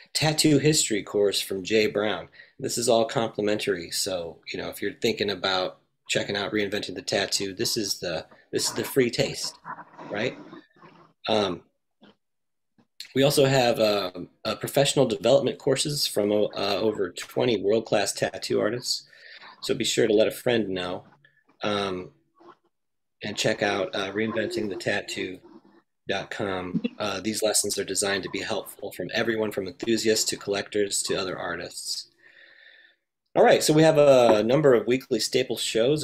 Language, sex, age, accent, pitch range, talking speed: English, male, 30-49, American, 100-135 Hz, 155 wpm